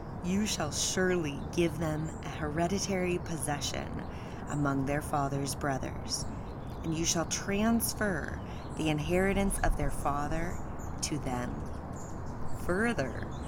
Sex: female